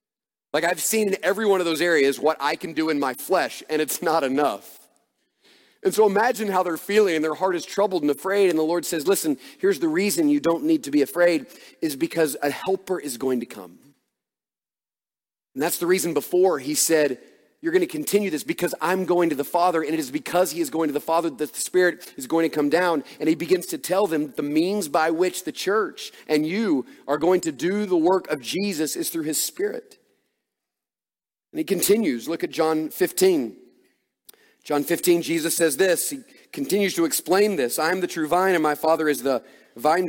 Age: 40-59